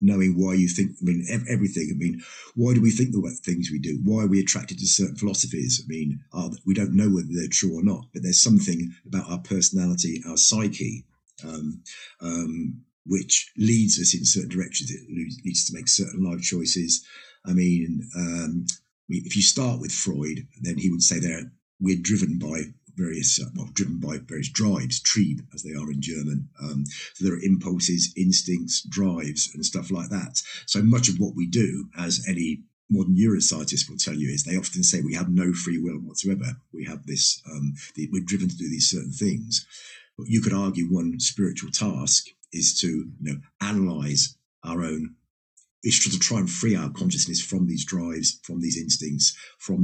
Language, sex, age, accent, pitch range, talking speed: English, male, 50-69, British, 80-100 Hz, 195 wpm